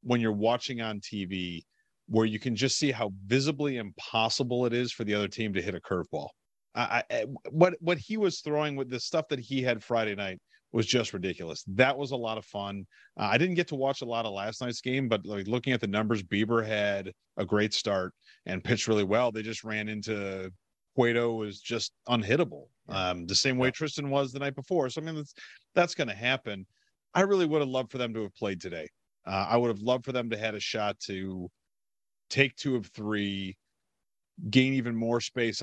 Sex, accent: male, American